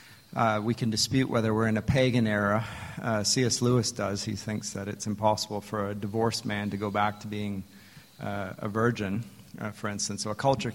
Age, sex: 40-59, male